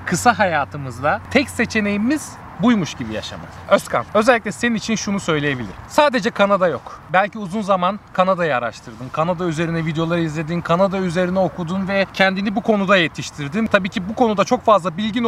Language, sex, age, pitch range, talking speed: Turkish, male, 30-49, 165-235 Hz, 155 wpm